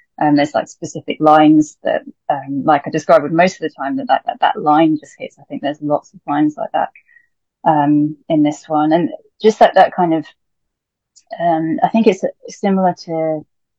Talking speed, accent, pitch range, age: 195 wpm, British, 155-195 Hz, 30-49